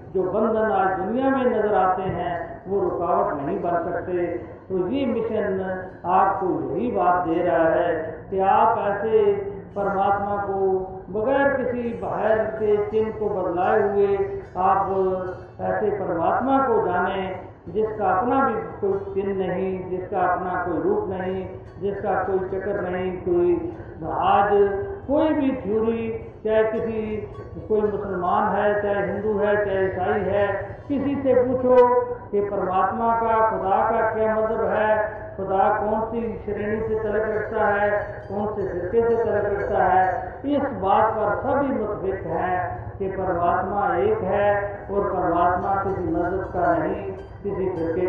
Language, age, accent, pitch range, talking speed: Hindi, 50-69, native, 185-220 Hz, 145 wpm